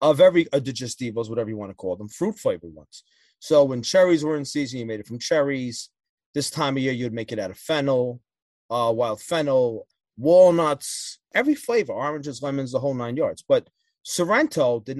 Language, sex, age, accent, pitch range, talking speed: English, male, 30-49, American, 115-160 Hz, 190 wpm